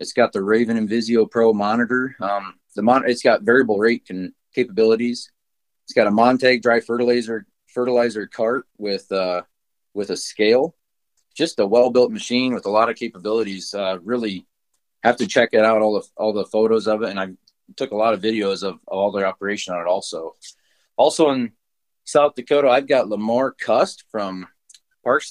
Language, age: English, 30-49